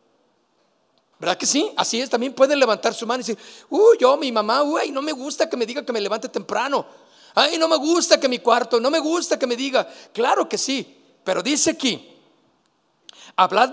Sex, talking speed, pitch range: male, 205 wpm, 215-310 Hz